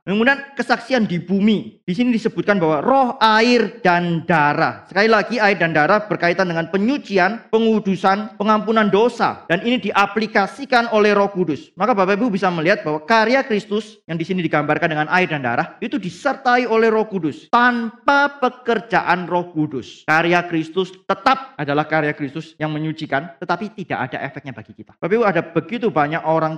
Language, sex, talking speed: Indonesian, male, 160 wpm